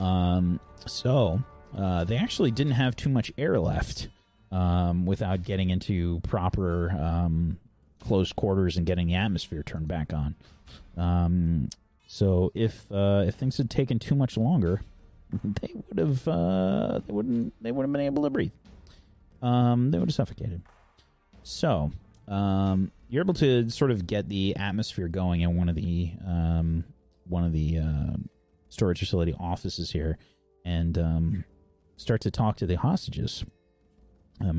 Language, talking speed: English, 155 wpm